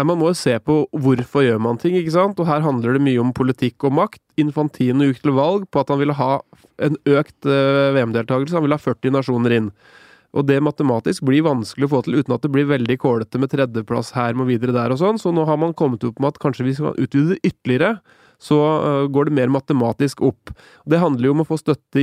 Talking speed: 215 wpm